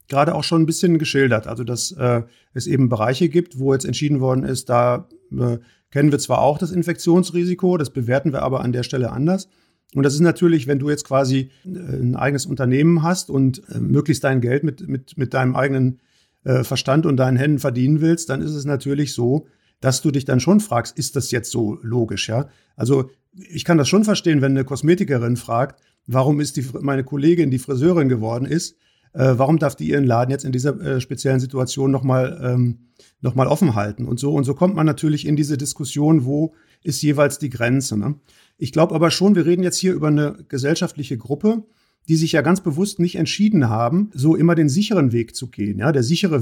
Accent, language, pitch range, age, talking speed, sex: German, German, 130-160 Hz, 50-69, 210 wpm, male